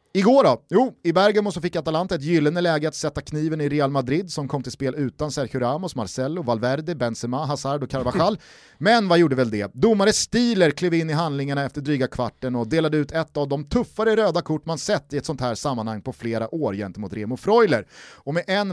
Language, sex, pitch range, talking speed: Swedish, male, 130-185 Hz, 220 wpm